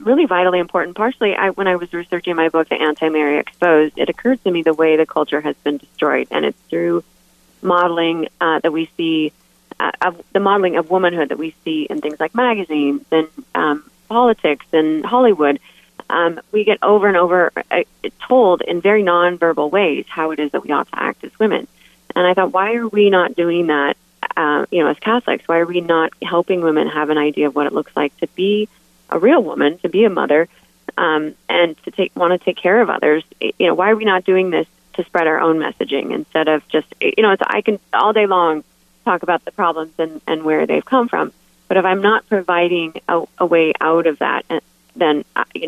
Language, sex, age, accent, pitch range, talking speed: English, female, 30-49, American, 155-185 Hz, 215 wpm